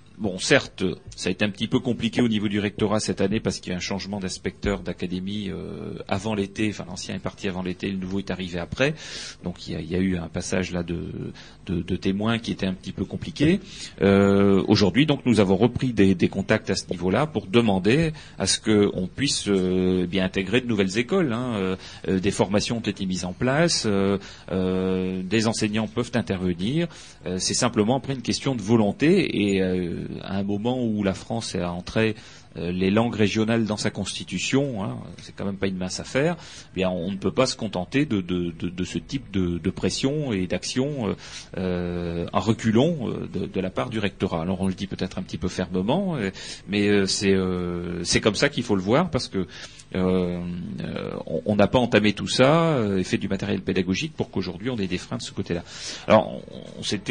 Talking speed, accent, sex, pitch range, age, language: 215 wpm, French, male, 95-115 Hz, 40-59, French